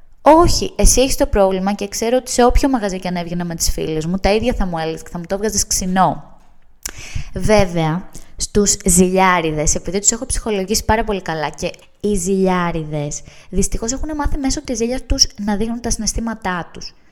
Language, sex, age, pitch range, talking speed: Greek, female, 20-39, 160-235 Hz, 185 wpm